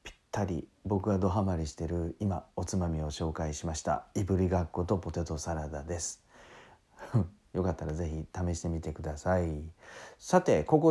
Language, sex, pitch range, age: Japanese, male, 80-100 Hz, 40-59